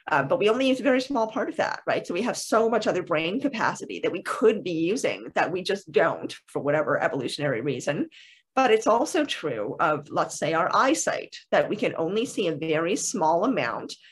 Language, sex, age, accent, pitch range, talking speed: English, female, 30-49, American, 170-265 Hz, 215 wpm